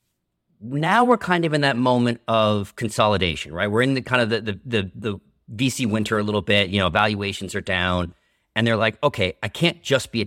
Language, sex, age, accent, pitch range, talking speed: English, male, 40-59, American, 95-120 Hz, 220 wpm